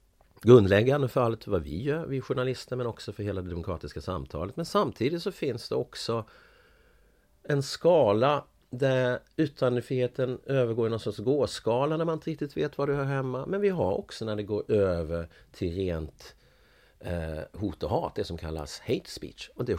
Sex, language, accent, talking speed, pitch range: male, Swedish, native, 180 wpm, 85-130 Hz